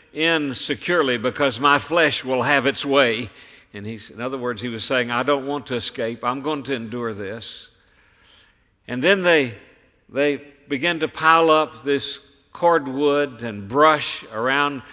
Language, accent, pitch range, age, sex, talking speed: English, American, 115-145 Hz, 60-79, male, 160 wpm